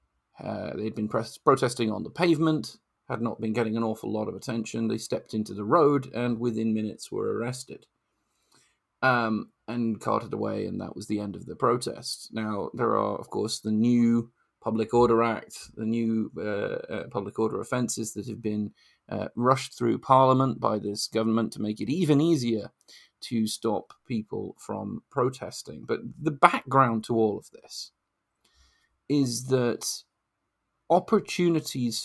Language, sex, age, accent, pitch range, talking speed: English, male, 30-49, British, 110-140 Hz, 160 wpm